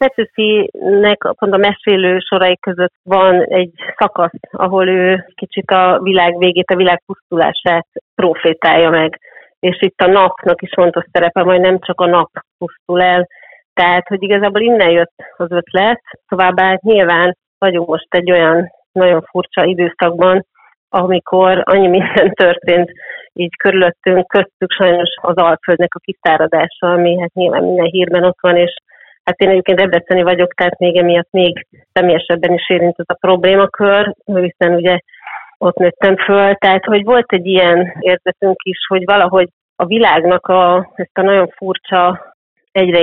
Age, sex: 30-49, female